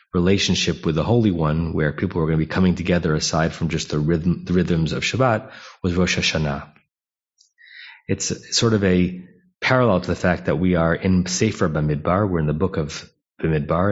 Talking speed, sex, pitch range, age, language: 195 wpm, male, 85-110 Hz, 30-49, English